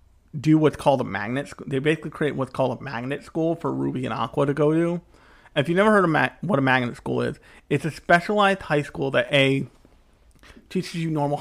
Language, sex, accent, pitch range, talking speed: English, male, American, 110-150 Hz, 215 wpm